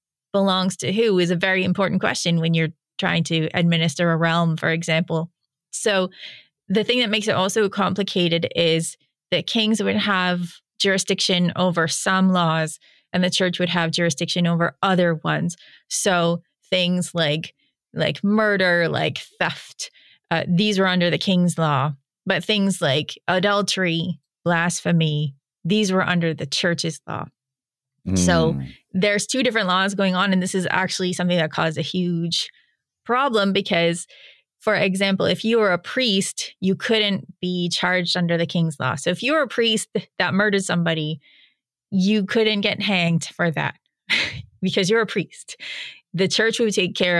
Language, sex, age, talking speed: English, female, 20-39, 160 wpm